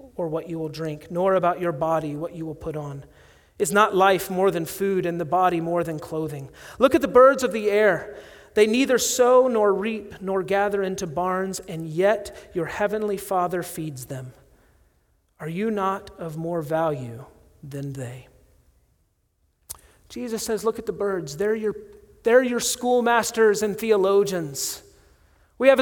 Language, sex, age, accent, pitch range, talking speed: English, male, 40-59, American, 165-225 Hz, 165 wpm